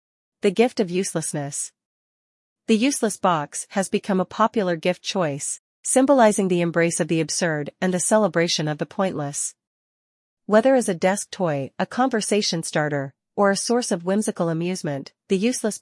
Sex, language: female, English